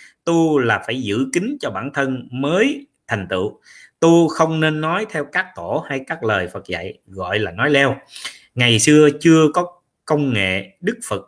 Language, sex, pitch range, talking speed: Vietnamese, male, 105-145 Hz, 185 wpm